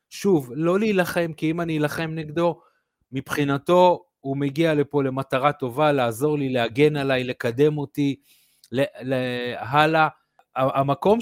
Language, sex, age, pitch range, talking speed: Hebrew, male, 30-49, 125-165 Hz, 120 wpm